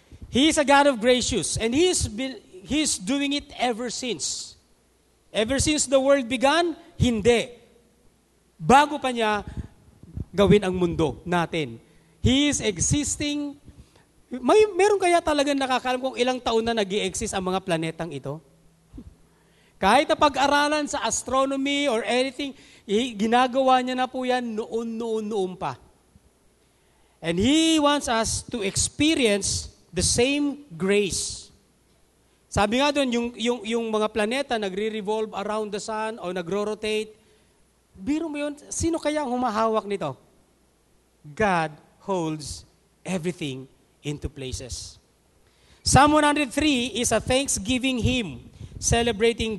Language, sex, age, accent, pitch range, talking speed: English, male, 40-59, Filipino, 195-275 Hz, 125 wpm